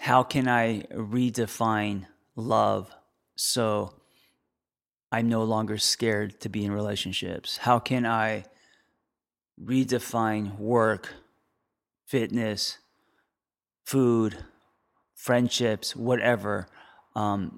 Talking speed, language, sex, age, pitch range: 80 wpm, English, male, 30-49, 105-120 Hz